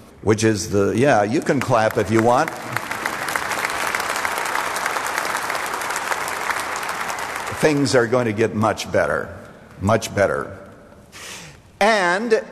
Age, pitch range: 60-79, 105-135 Hz